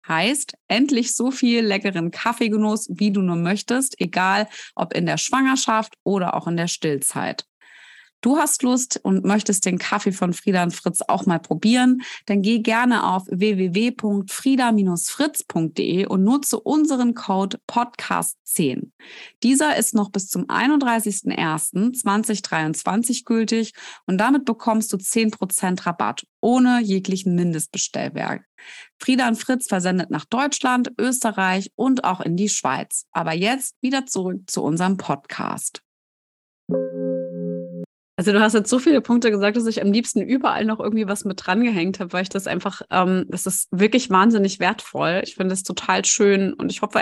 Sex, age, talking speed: female, 30-49, 150 wpm